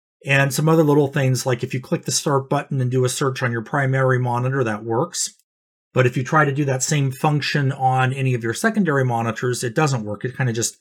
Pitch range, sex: 120-155 Hz, male